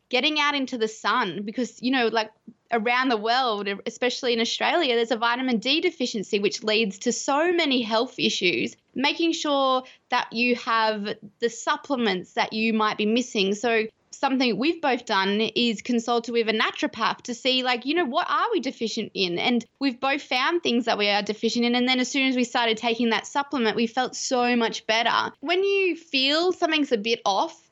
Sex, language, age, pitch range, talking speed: female, English, 20-39, 225-285 Hz, 195 wpm